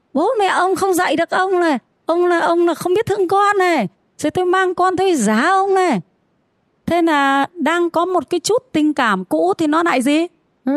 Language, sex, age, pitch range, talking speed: Vietnamese, female, 20-39, 220-320 Hz, 225 wpm